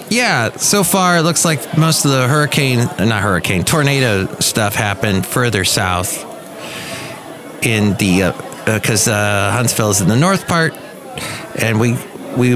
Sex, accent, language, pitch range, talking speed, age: male, American, English, 125-170 Hz, 150 wpm, 30-49